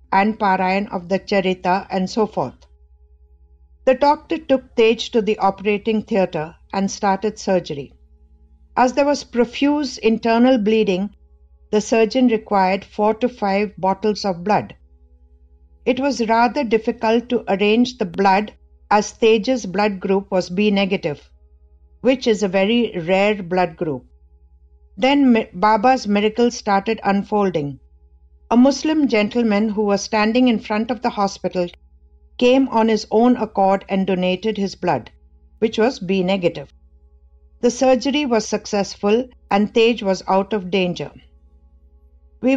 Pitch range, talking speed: 155-225 Hz, 135 wpm